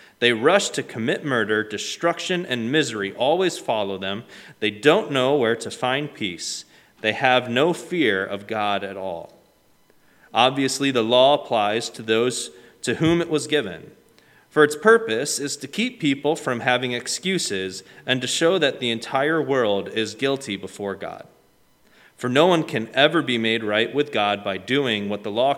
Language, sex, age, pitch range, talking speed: English, male, 30-49, 110-140 Hz, 170 wpm